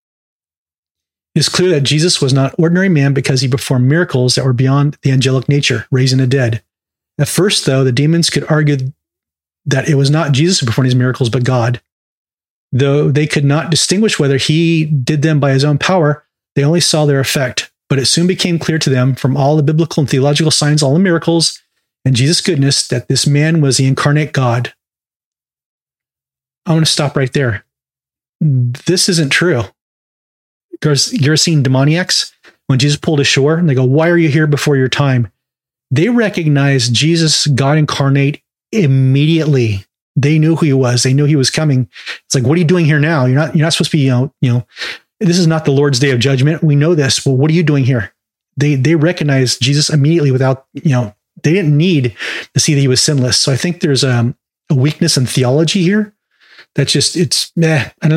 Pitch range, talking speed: 130-160 Hz, 205 wpm